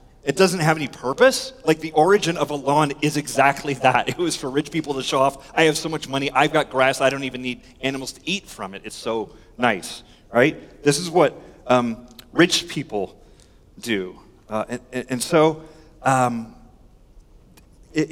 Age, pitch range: 30-49, 130-160 Hz